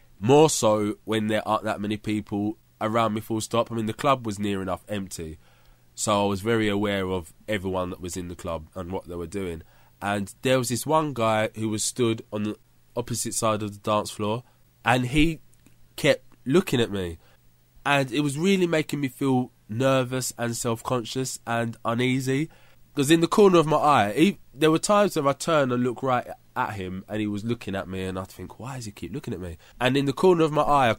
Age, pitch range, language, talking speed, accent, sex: 20-39, 100-125 Hz, English, 225 wpm, British, male